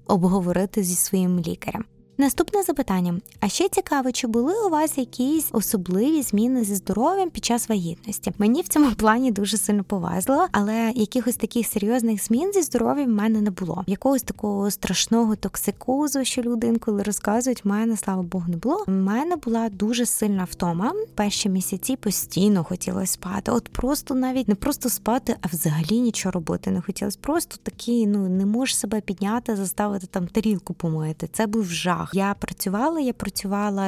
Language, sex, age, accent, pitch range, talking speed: Ukrainian, female, 20-39, native, 185-235 Hz, 170 wpm